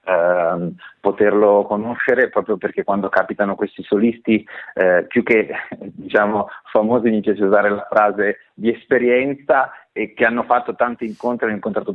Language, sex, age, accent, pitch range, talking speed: Italian, male, 40-59, native, 100-120 Hz, 145 wpm